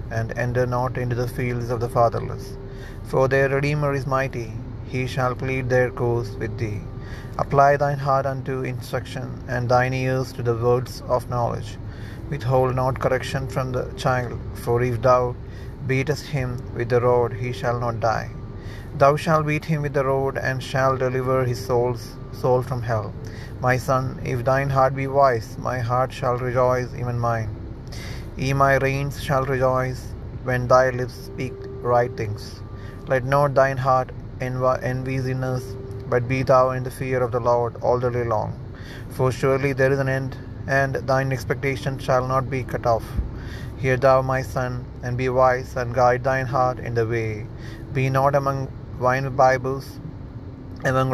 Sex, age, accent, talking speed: male, 30-49, native, 170 wpm